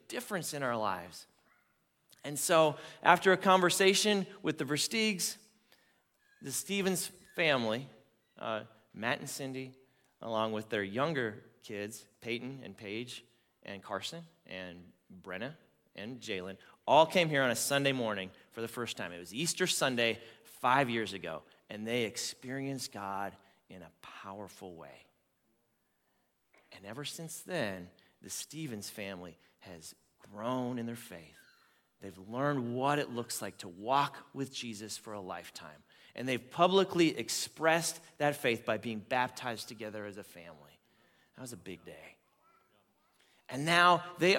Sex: male